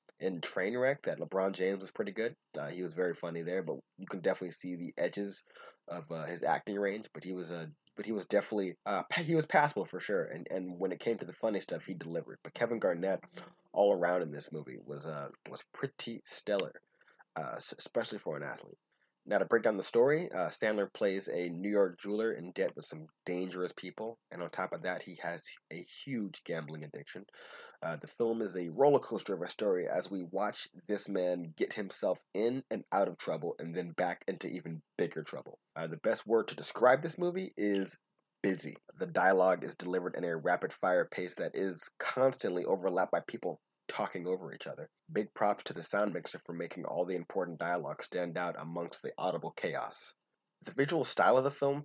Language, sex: English, male